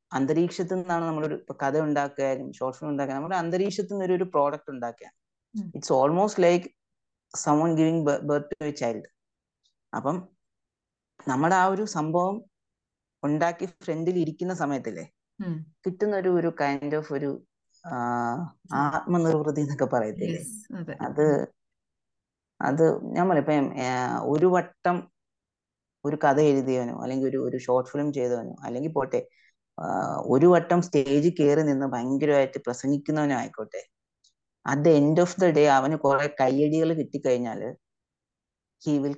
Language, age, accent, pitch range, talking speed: Malayalam, 30-49, native, 135-170 Hz, 110 wpm